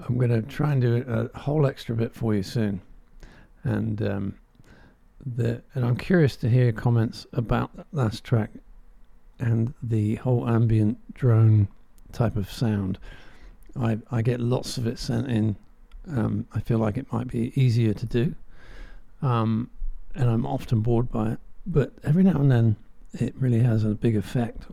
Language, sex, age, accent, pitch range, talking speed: English, male, 50-69, British, 110-130 Hz, 170 wpm